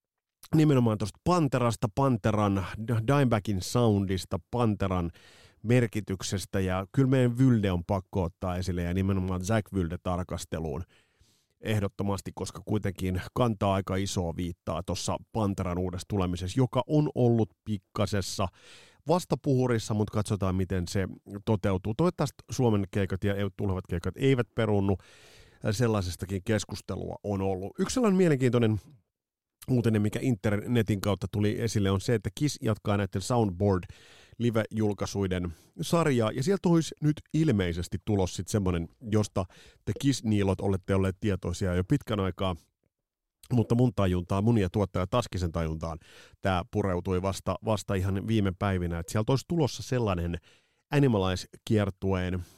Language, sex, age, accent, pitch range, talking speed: Finnish, male, 30-49, native, 95-120 Hz, 125 wpm